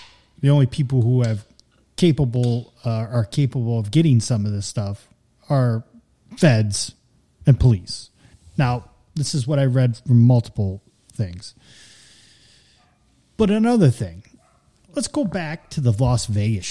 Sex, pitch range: male, 115-140 Hz